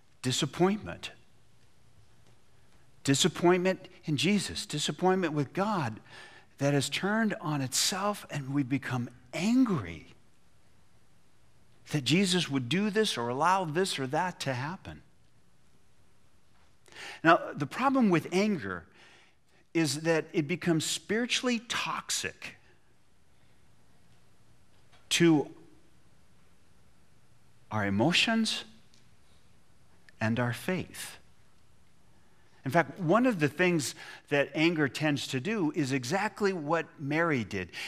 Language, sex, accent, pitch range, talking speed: English, male, American, 120-180 Hz, 95 wpm